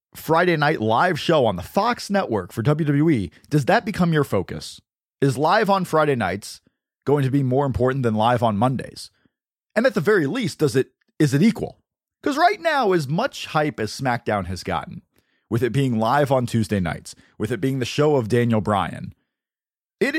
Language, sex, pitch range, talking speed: English, male, 115-160 Hz, 195 wpm